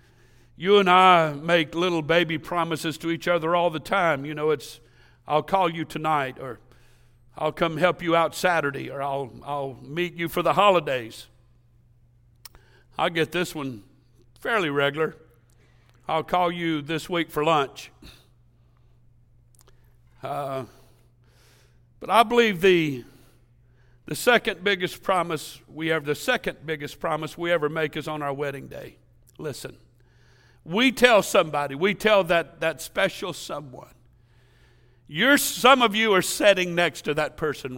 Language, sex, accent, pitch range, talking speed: English, male, American, 120-175 Hz, 145 wpm